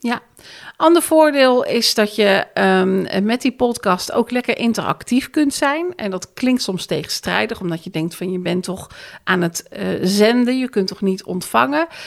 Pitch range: 185-240 Hz